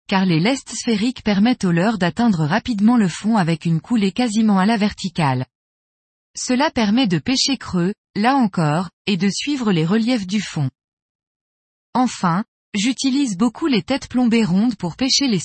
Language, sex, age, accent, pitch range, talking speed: French, female, 20-39, French, 185-245 Hz, 165 wpm